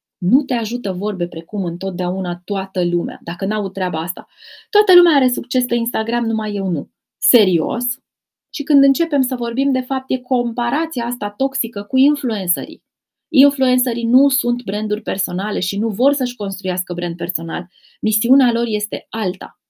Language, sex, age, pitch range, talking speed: Romanian, female, 20-39, 190-245 Hz, 155 wpm